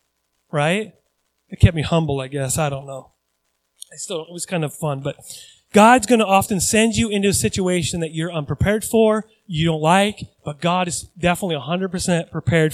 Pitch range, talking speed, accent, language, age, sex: 150-225 Hz, 200 wpm, American, Finnish, 30-49, male